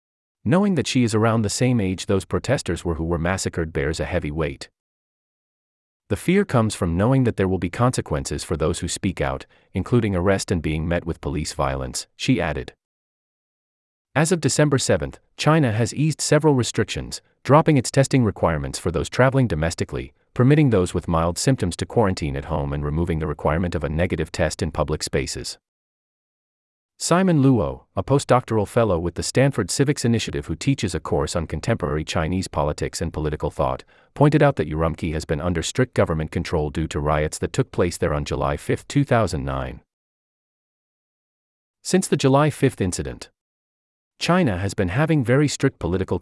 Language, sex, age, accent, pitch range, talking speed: English, male, 30-49, American, 75-125 Hz, 175 wpm